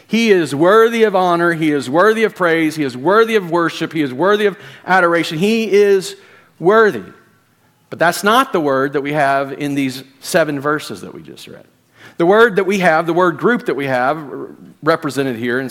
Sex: male